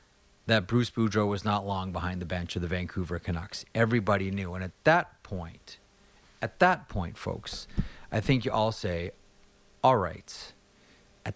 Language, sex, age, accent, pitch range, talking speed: English, male, 40-59, American, 100-130 Hz, 165 wpm